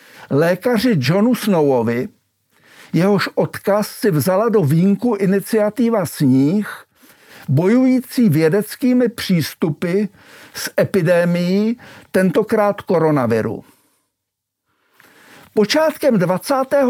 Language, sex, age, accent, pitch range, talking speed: Czech, male, 60-79, native, 165-235 Hz, 70 wpm